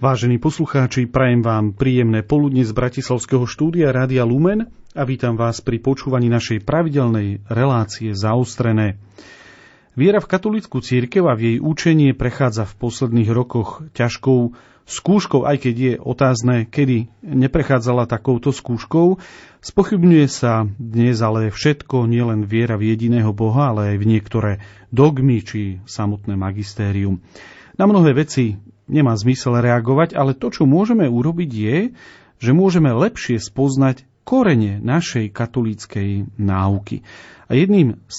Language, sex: Slovak, male